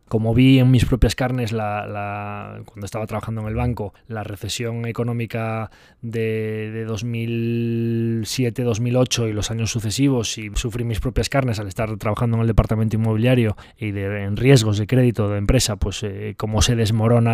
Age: 20-39